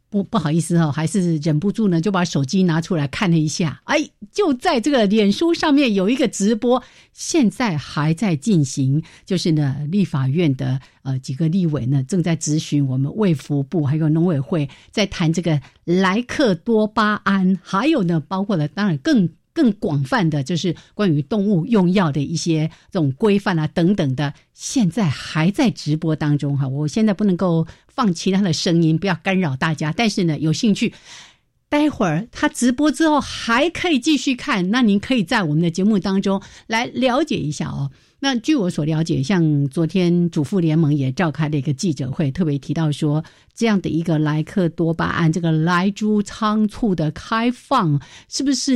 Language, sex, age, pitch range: Chinese, female, 50-69, 155-210 Hz